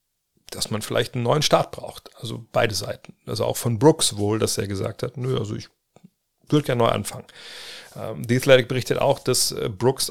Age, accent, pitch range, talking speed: 40-59, German, 115-135 Hz, 190 wpm